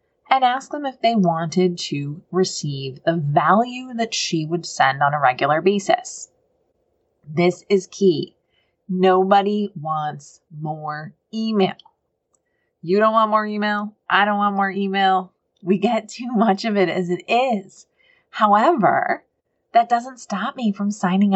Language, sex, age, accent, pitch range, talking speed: English, female, 30-49, American, 155-210 Hz, 145 wpm